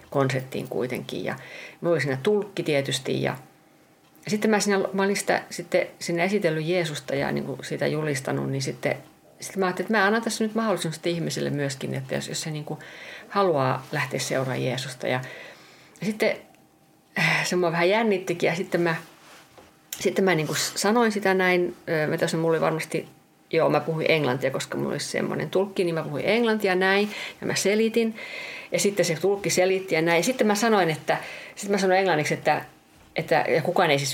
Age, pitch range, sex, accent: 50-69, 155-205 Hz, female, native